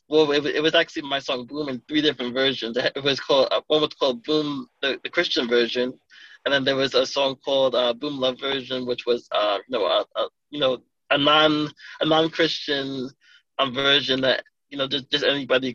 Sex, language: male, English